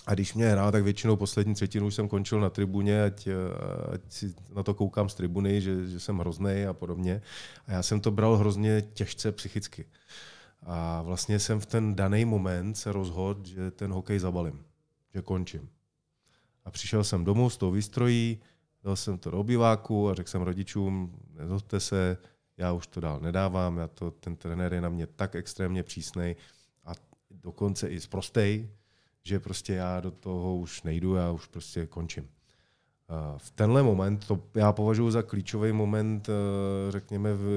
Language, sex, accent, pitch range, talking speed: Czech, male, native, 90-110 Hz, 175 wpm